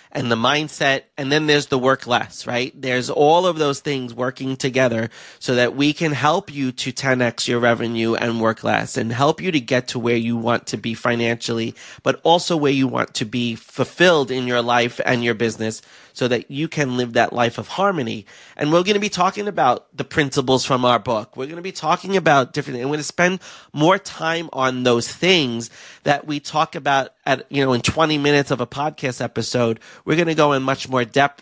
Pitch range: 125-150 Hz